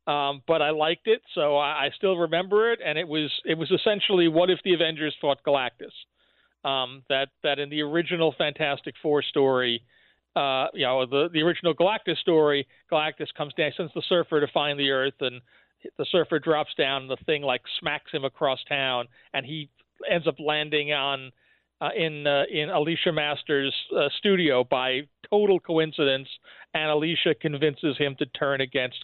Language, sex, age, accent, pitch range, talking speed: English, male, 40-59, American, 140-175 Hz, 180 wpm